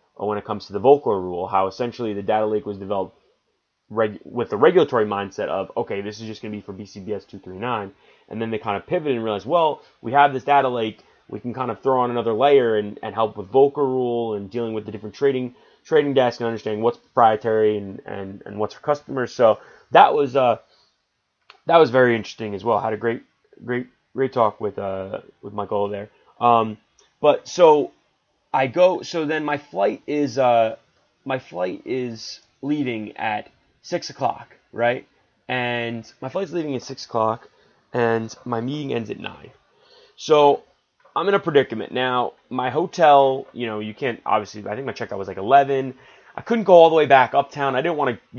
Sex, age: male, 20-39